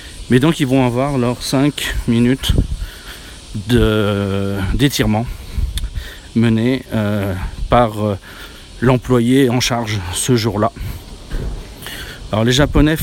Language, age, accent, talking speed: French, 40-59, French, 95 wpm